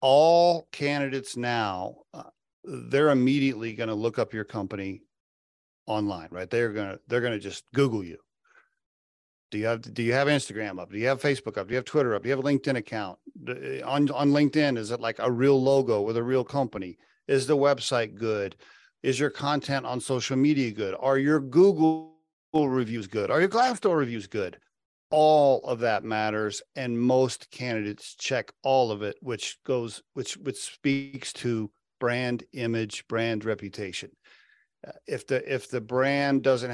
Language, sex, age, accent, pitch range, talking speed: English, male, 40-59, American, 110-140 Hz, 175 wpm